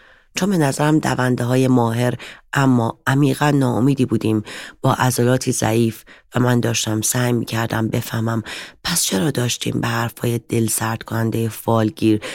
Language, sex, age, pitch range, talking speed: Persian, female, 30-49, 110-130 Hz, 135 wpm